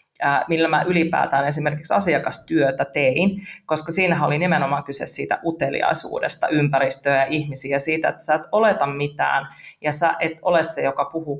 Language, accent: Finnish, native